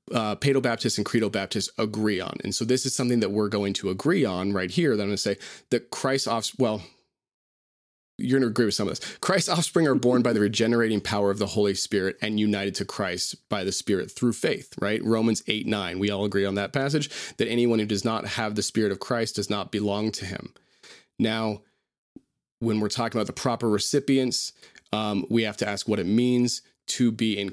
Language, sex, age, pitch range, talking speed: English, male, 30-49, 105-125 Hz, 220 wpm